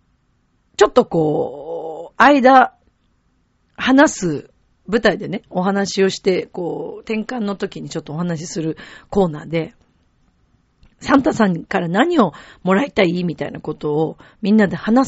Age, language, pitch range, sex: 40-59, Japanese, 170-260 Hz, female